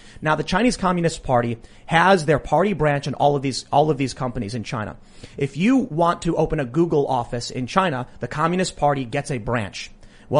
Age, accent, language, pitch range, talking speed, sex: 30-49, American, English, 130-175 Hz, 210 wpm, male